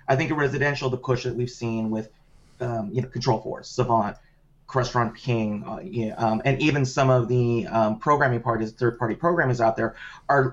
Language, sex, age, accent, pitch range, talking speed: English, male, 30-49, American, 120-145 Hz, 200 wpm